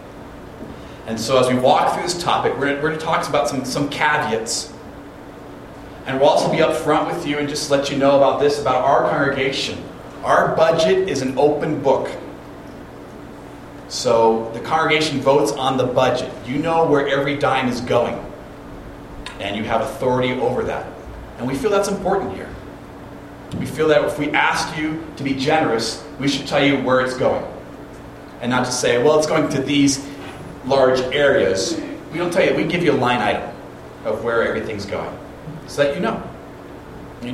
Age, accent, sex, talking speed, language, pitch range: 30-49, American, male, 180 wpm, English, 130-155 Hz